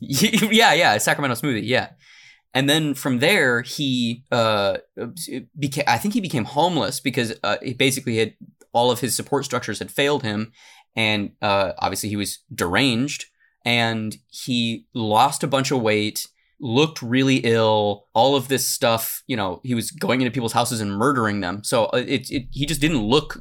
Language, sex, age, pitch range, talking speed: English, male, 20-39, 110-140 Hz, 170 wpm